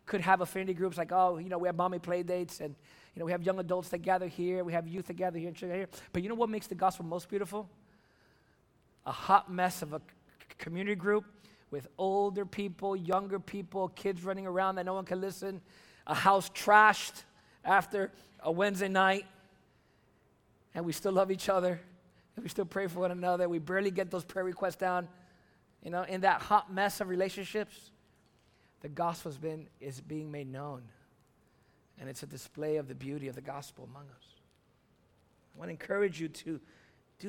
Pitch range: 180-220 Hz